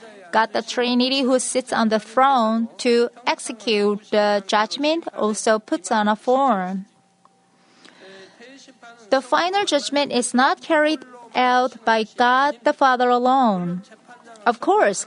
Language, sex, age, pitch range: Korean, female, 30-49, 220-265 Hz